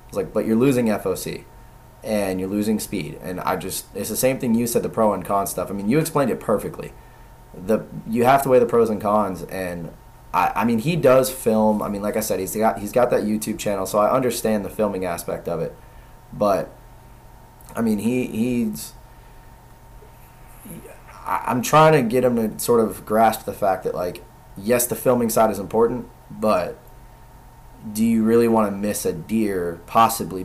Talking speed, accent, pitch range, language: 195 wpm, American, 95-120 Hz, English